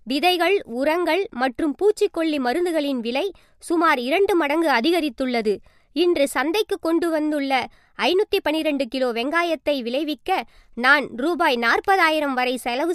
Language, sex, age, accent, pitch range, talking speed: Tamil, male, 20-39, native, 270-365 Hz, 110 wpm